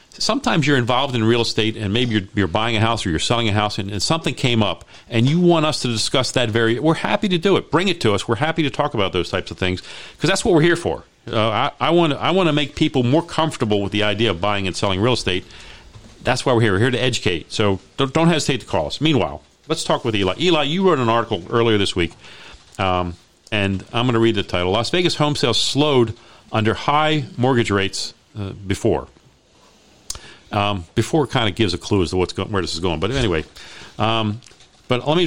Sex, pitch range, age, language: male, 100-135 Hz, 40-59, English